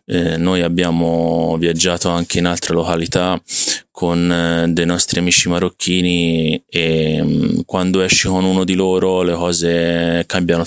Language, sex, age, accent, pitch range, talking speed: Italian, male, 20-39, native, 85-95 Hz, 135 wpm